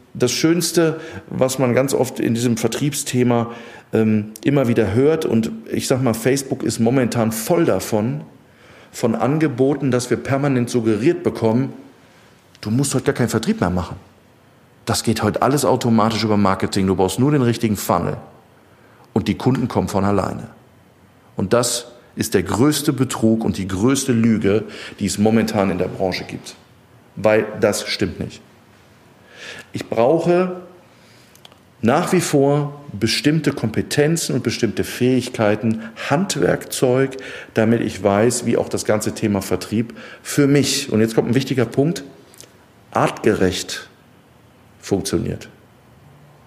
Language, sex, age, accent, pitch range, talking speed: German, male, 40-59, German, 110-130 Hz, 140 wpm